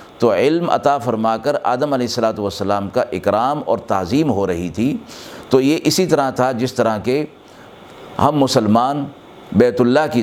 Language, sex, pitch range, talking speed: Urdu, male, 105-140 Hz, 170 wpm